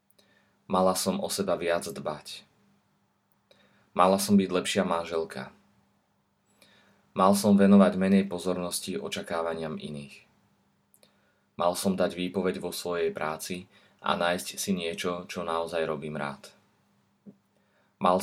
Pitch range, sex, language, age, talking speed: 80-95 Hz, male, Slovak, 20-39, 110 wpm